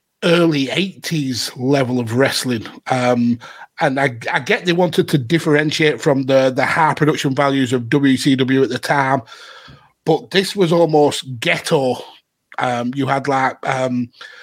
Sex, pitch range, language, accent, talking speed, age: male, 135-165 Hz, English, British, 145 wpm, 30-49